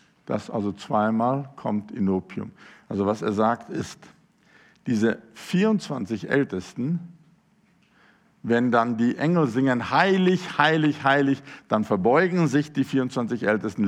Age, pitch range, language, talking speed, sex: 50-69, 110-175 Hz, German, 115 wpm, male